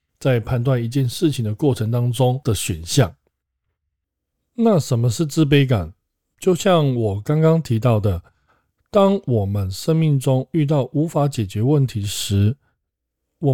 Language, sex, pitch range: Chinese, male, 100-145 Hz